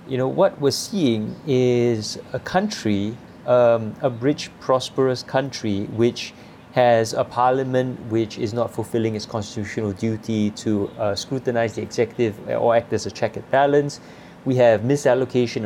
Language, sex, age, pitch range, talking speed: English, male, 30-49, 115-150 Hz, 150 wpm